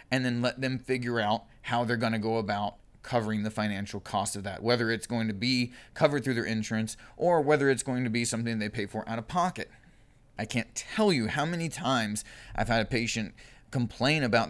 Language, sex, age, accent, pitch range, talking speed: English, male, 30-49, American, 110-130 Hz, 220 wpm